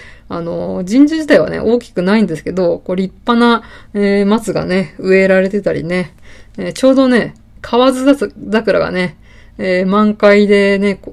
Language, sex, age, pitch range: Japanese, female, 20-39, 175-215 Hz